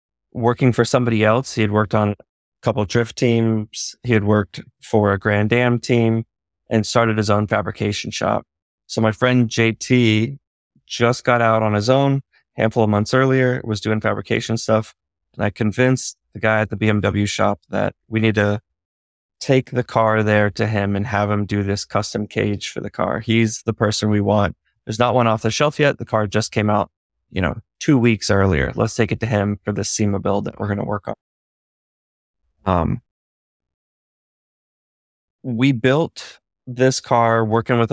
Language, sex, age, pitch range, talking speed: English, male, 20-39, 105-115 Hz, 190 wpm